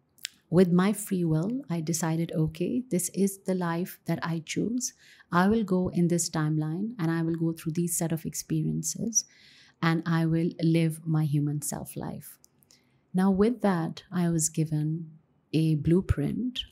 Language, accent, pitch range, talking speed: English, Indian, 155-190 Hz, 160 wpm